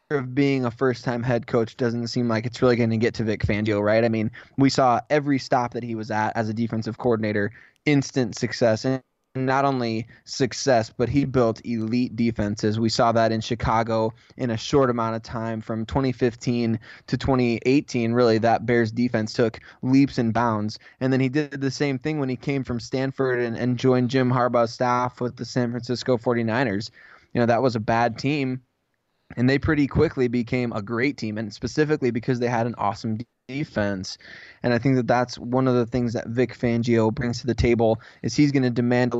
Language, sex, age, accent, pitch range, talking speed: English, male, 20-39, American, 115-130 Hz, 205 wpm